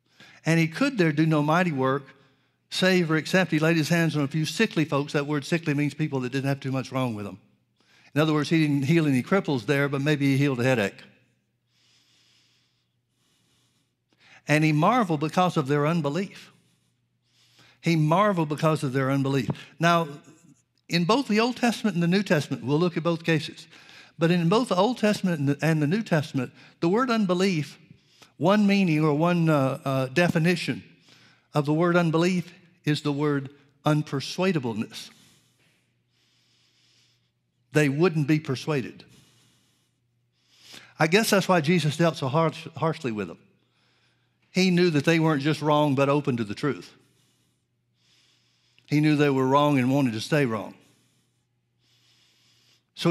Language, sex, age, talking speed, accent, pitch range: English, male, 60-79, 160 wpm, American, 140-170 Hz